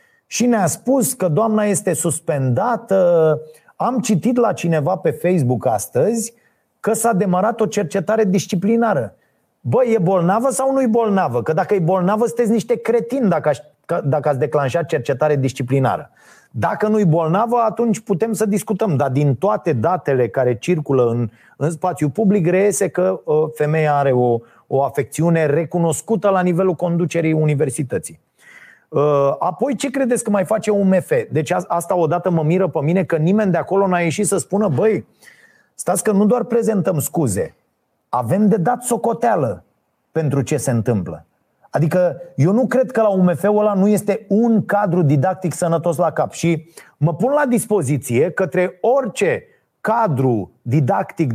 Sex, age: male, 30-49